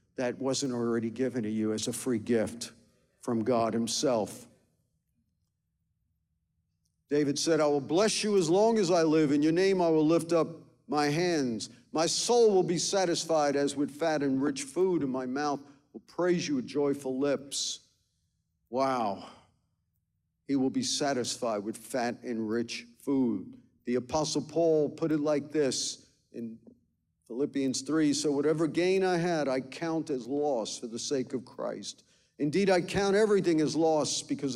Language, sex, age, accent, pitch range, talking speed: English, male, 50-69, American, 120-155 Hz, 165 wpm